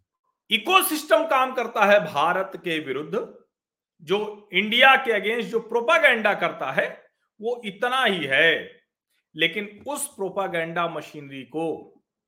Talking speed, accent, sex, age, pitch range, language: 115 wpm, native, male, 50-69, 170-265 Hz, Hindi